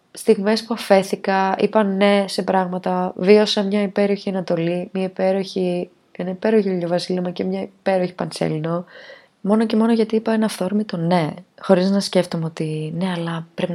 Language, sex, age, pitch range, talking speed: Greek, female, 20-39, 160-195 Hz, 155 wpm